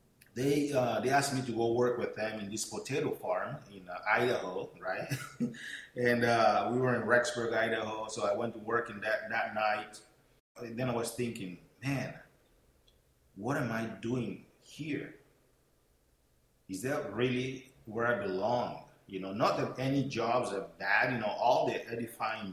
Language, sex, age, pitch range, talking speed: English, male, 30-49, 100-125 Hz, 170 wpm